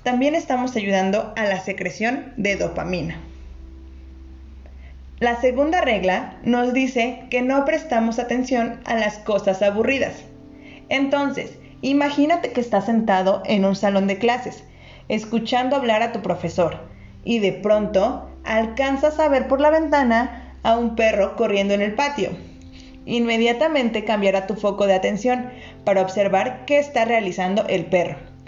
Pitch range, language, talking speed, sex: 190-245 Hz, Spanish, 135 wpm, female